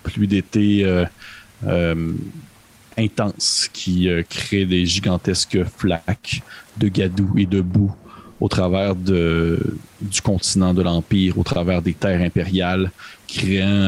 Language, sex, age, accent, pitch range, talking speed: French, male, 40-59, Canadian, 90-105 Hz, 125 wpm